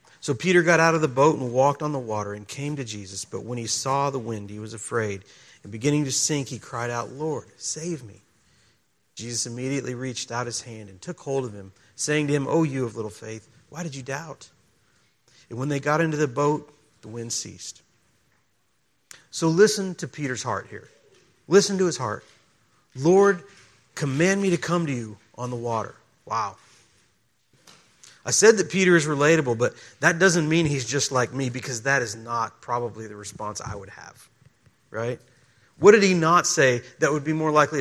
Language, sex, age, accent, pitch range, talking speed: English, male, 40-59, American, 120-170 Hz, 195 wpm